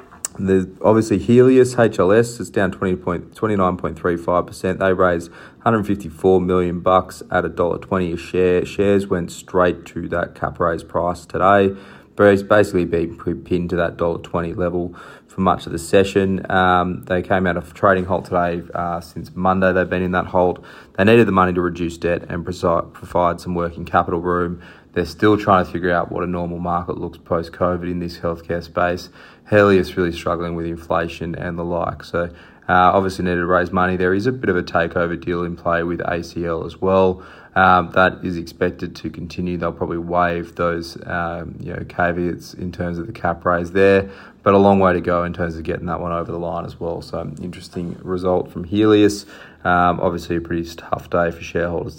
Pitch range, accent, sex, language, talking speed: 85-95 Hz, Australian, male, English, 200 wpm